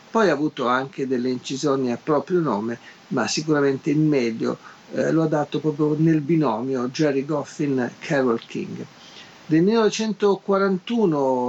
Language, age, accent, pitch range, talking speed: Italian, 50-69, native, 125-155 Hz, 130 wpm